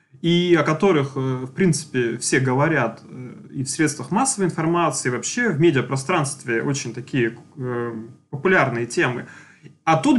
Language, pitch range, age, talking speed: Russian, 140-185 Hz, 20-39, 130 wpm